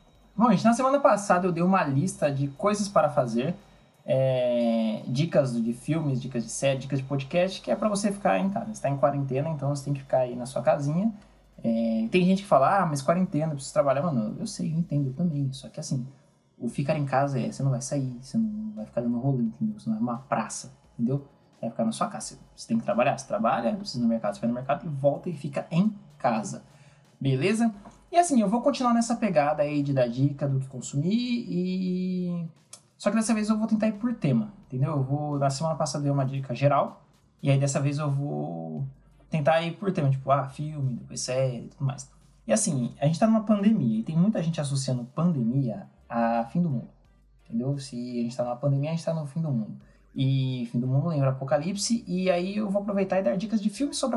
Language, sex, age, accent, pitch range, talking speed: Portuguese, male, 20-39, Brazilian, 135-195 Hz, 240 wpm